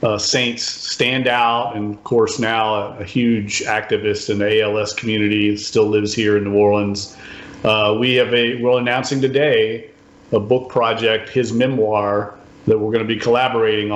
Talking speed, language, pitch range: 170 wpm, English, 105-125 Hz